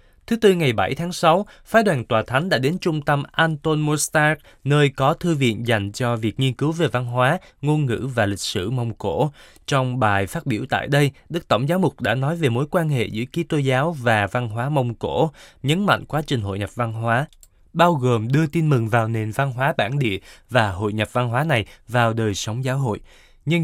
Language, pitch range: Vietnamese, 115-150 Hz